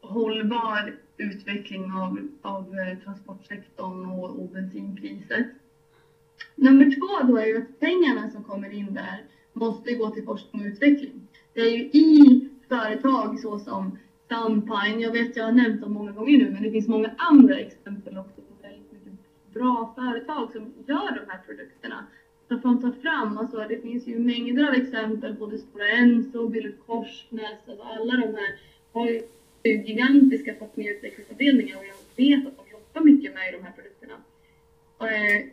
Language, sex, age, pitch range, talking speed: Swedish, female, 20-39, 210-255 Hz, 155 wpm